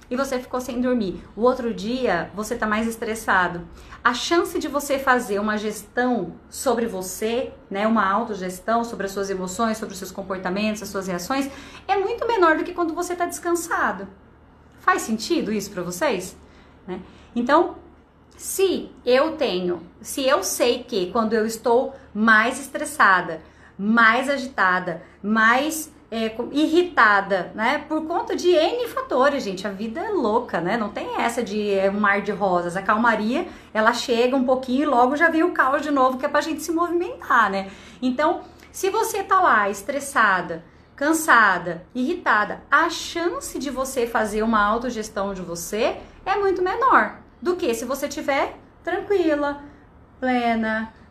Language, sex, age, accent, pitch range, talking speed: Portuguese, female, 30-49, Brazilian, 210-310 Hz, 160 wpm